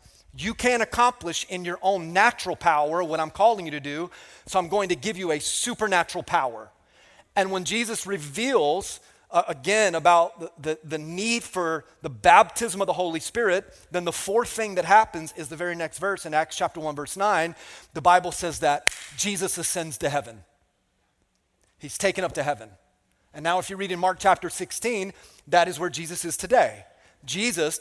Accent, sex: American, male